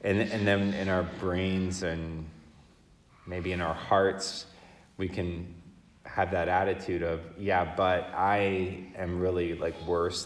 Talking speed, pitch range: 140 wpm, 85-95 Hz